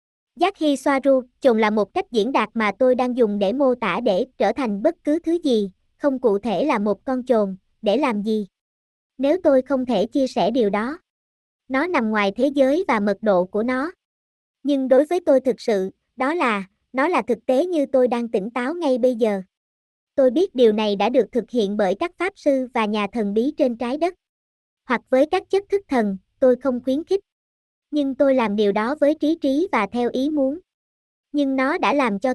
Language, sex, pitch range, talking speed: Vietnamese, male, 220-295 Hz, 220 wpm